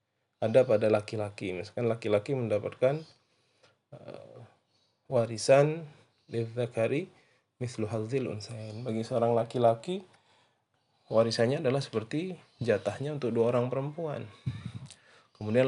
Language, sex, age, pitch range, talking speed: Indonesian, male, 20-39, 115-140 Hz, 75 wpm